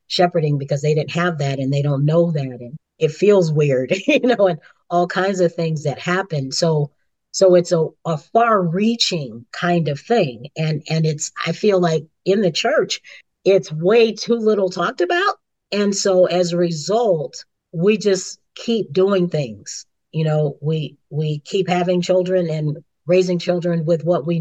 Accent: American